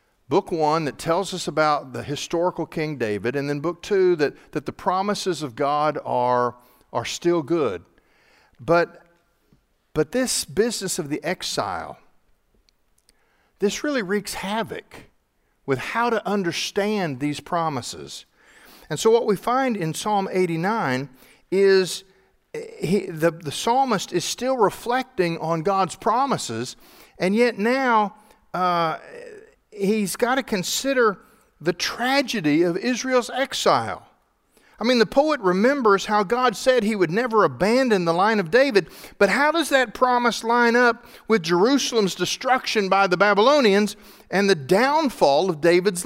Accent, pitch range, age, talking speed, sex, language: American, 170-240 Hz, 50-69, 140 wpm, male, English